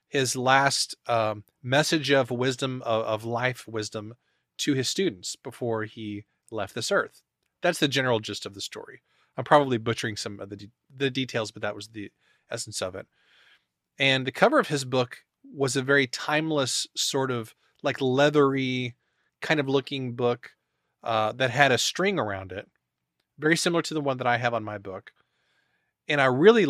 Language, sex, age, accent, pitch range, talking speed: English, male, 30-49, American, 110-145 Hz, 180 wpm